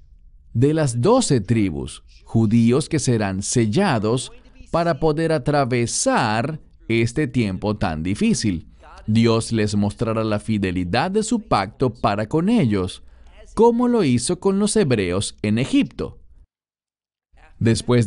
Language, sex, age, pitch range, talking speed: English, male, 40-59, 105-140 Hz, 115 wpm